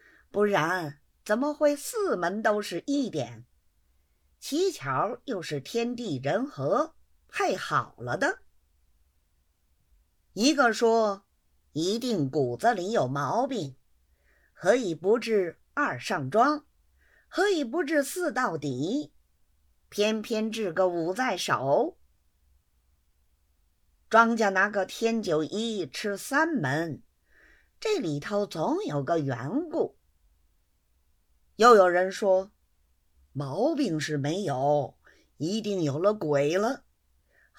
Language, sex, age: Chinese, female, 50-69